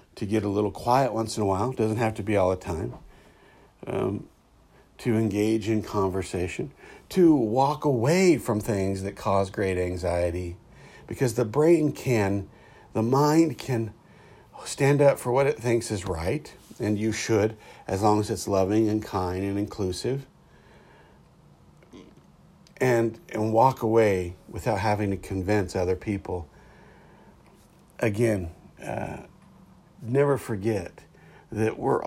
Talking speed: 135 wpm